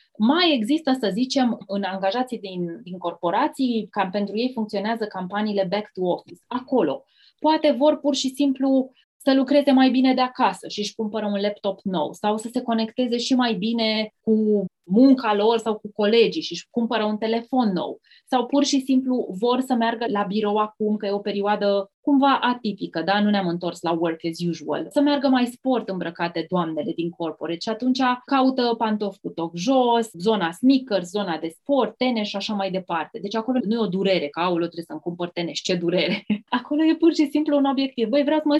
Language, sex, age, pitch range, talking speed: Romanian, female, 20-39, 185-255 Hz, 195 wpm